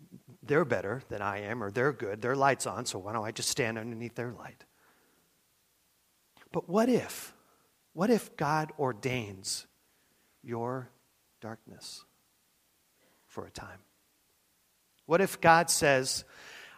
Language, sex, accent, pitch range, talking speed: English, male, American, 105-145 Hz, 130 wpm